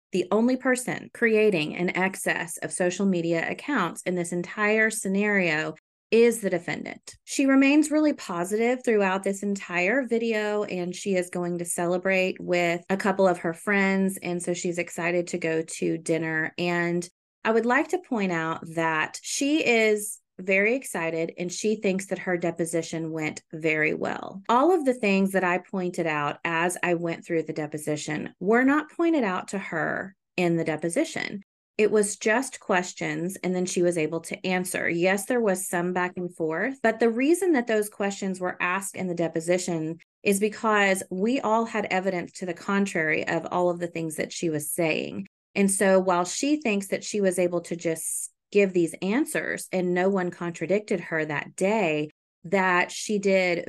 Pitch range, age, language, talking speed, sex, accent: 170-210 Hz, 30-49, English, 180 wpm, female, American